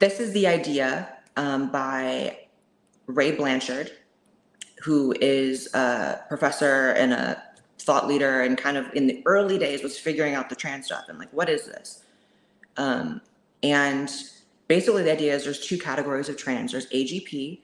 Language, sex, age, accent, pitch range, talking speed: English, female, 30-49, American, 135-170 Hz, 160 wpm